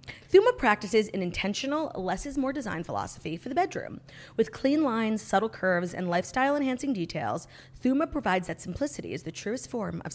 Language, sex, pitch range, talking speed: English, female, 170-255 Hz, 175 wpm